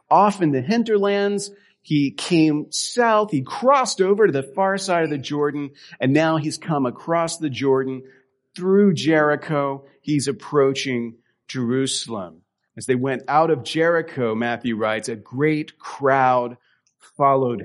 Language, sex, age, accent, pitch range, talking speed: English, male, 40-59, American, 130-170 Hz, 140 wpm